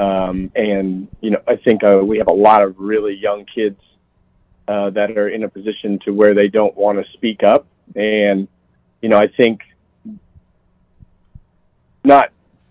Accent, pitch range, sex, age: American, 95-110 Hz, male, 40-59